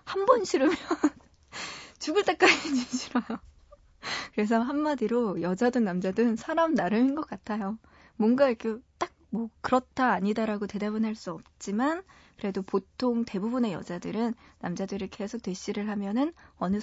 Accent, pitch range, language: native, 195-260 Hz, Korean